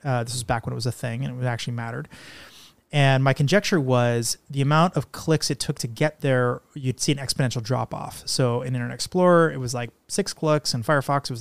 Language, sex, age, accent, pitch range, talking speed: English, male, 30-49, American, 125-155 Hz, 240 wpm